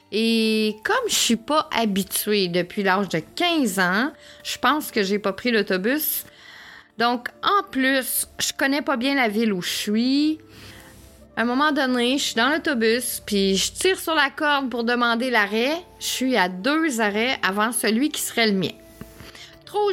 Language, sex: French, female